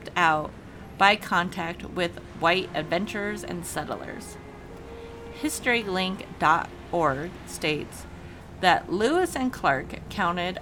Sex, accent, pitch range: female, American, 165-225 Hz